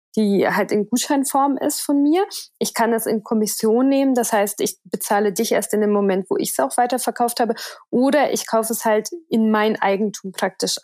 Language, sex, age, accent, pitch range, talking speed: German, female, 20-39, German, 205-240 Hz, 205 wpm